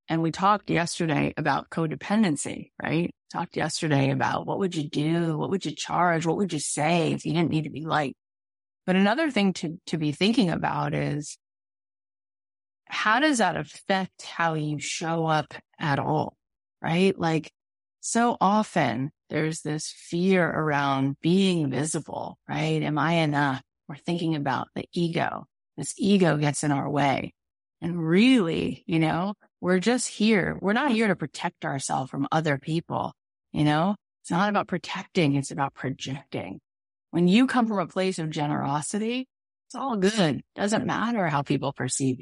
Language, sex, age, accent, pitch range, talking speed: English, female, 30-49, American, 145-190 Hz, 165 wpm